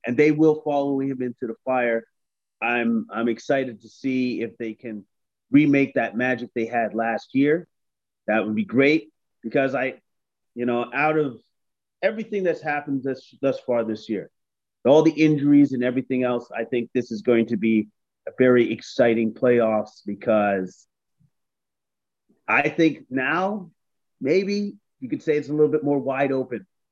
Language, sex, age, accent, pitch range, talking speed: English, male, 30-49, American, 115-150 Hz, 160 wpm